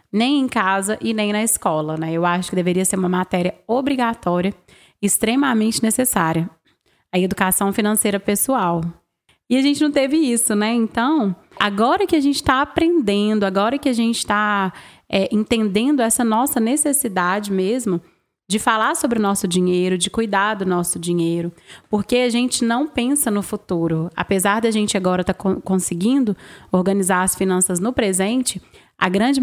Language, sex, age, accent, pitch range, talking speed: Portuguese, female, 20-39, Brazilian, 190-235 Hz, 160 wpm